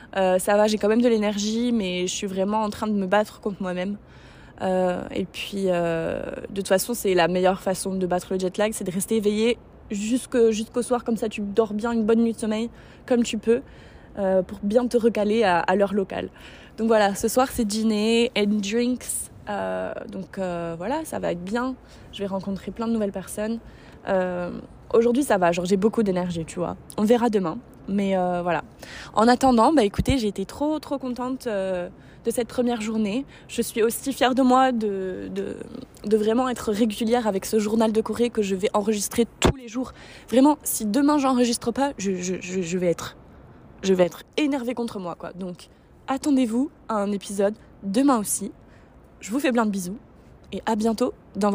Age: 20-39